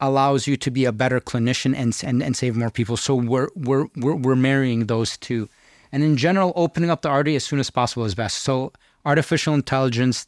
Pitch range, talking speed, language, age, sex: 120-140 Hz, 215 wpm, English, 30-49, male